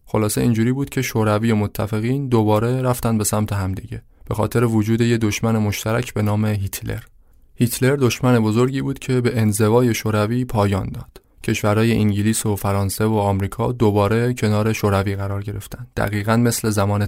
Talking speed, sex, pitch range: 160 wpm, male, 105-120 Hz